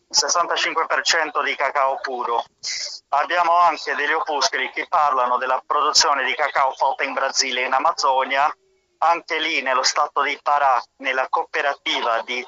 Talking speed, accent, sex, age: 145 wpm, native, male, 30-49